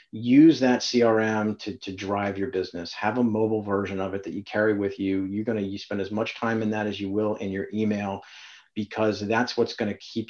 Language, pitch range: English, 105-120 Hz